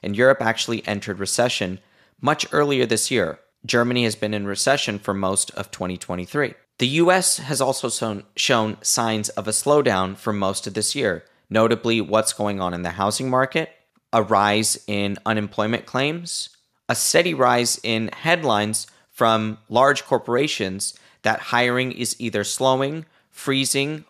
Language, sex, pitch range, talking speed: English, male, 105-135 Hz, 145 wpm